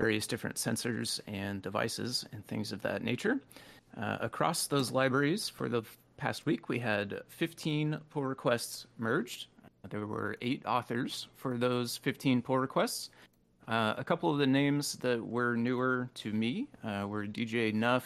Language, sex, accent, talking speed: English, male, American, 165 wpm